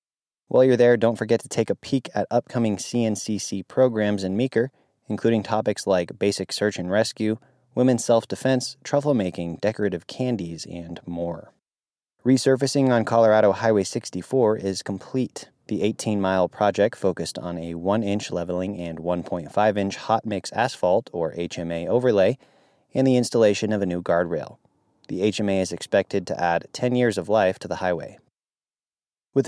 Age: 30-49